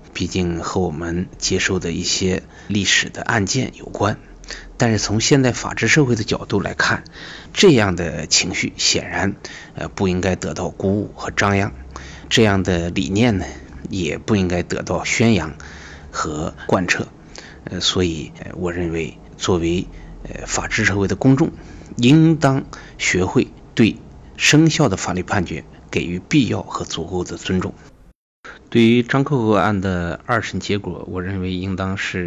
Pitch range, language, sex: 90-115 Hz, Chinese, male